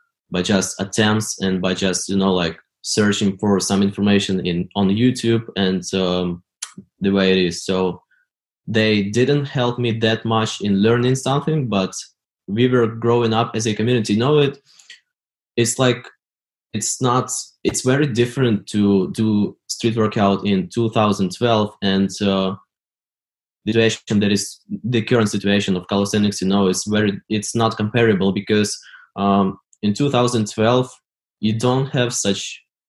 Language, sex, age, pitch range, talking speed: English, male, 20-39, 95-115 Hz, 150 wpm